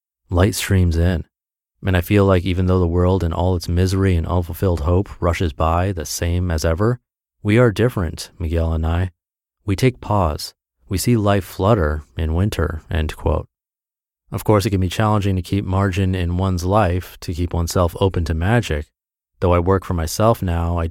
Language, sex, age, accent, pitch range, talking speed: English, male, 30-49, American, 85-110 Hz, 190 wpm